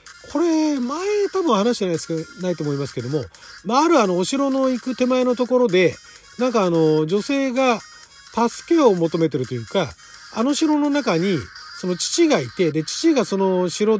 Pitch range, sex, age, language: 160-255 Hz, male, 40-59, Japanese